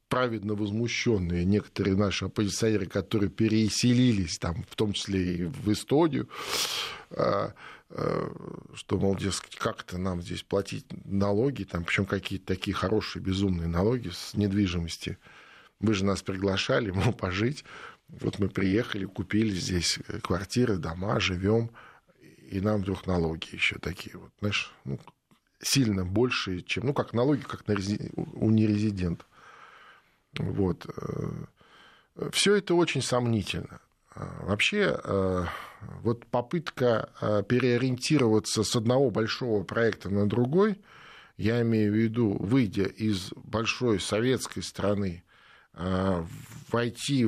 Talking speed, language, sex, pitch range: 115 wpm, Russian, male, 95-120 Hz